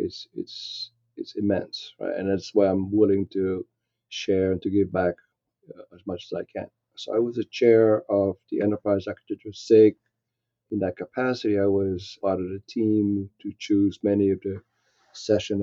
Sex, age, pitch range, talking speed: male, 40-59, 100-115 Hz, 180 wpm